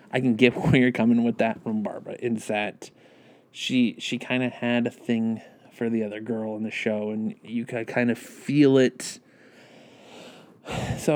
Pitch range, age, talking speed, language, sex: 110-130 Hz, 20-39, 185 wpm, English, male